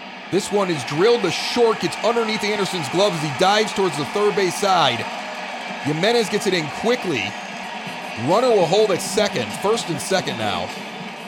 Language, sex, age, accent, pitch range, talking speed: English, male, 30-49, American, 170-220 Hz, 170 wpm